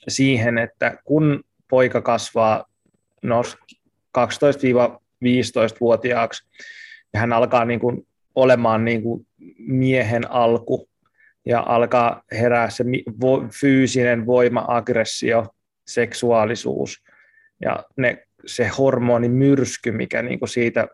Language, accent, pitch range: Finnish, native, 120-140 Hz